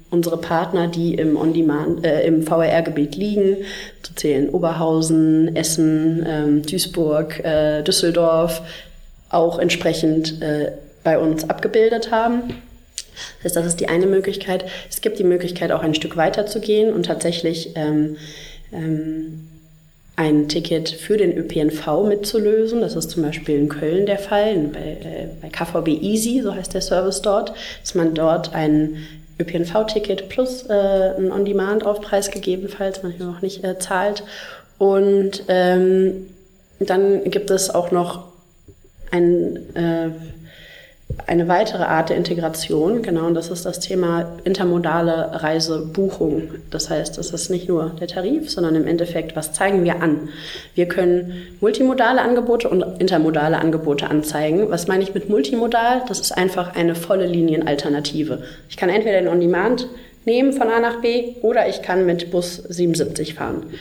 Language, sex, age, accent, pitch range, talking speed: German, female, 30-49, German, 160-200 Hz, 150 wpm